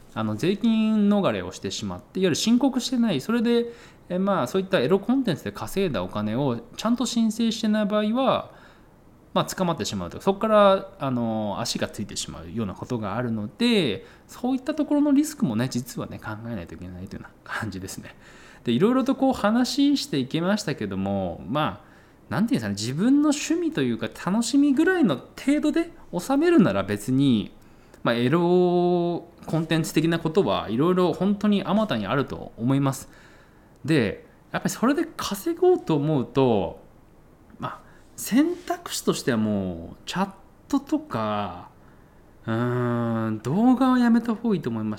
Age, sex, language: 20-39, male, Japanese